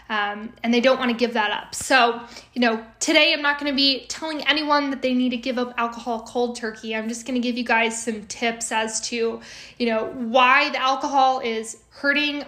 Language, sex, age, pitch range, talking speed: English, female, 10-29, 220-260 Hz, 225 wpm